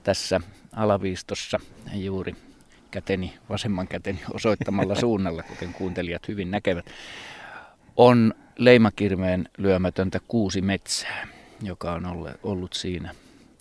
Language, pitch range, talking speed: Finnish, 90-100 Hz, 95 wpm